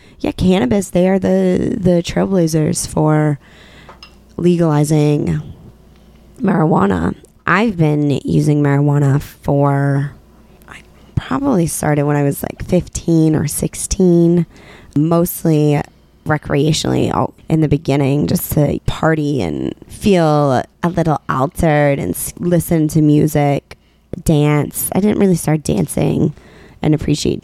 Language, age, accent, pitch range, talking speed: English, 20-39, American, 145-170 Hz, 110 wpm